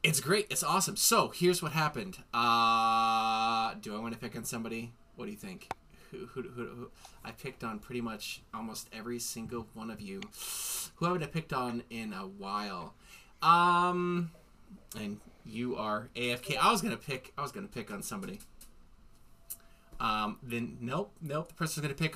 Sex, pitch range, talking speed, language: male, 105-160 Hz, 185 wpm, English